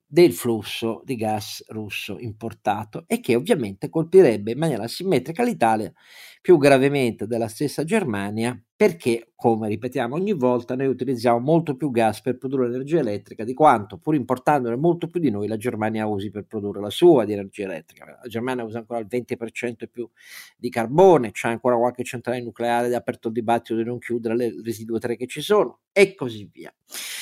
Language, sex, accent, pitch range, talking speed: Italian, male, native, 115-180 Hz, 180 wpm